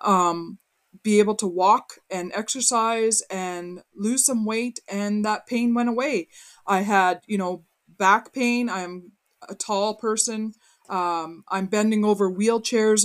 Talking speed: 145 wpm